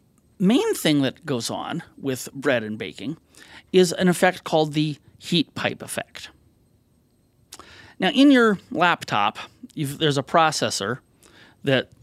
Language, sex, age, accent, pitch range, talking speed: English, male, 30-49, American, 130-185 Hz, 125 wpm